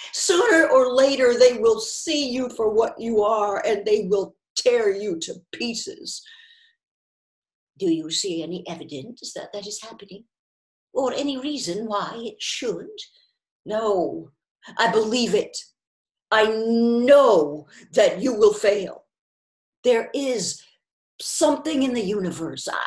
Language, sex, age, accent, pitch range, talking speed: English, female, 50-69, American, 210-310 Hz, 130 wpm